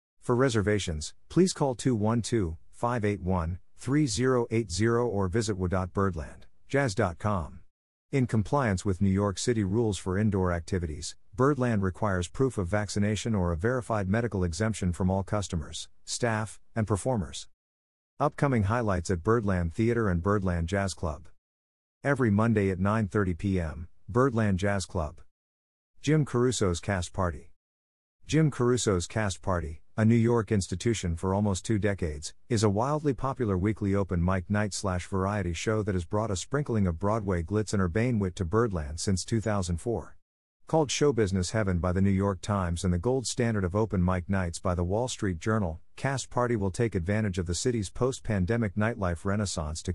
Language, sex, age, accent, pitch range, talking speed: English, male, 50-69, American, 90-115 Hz, 150 wpm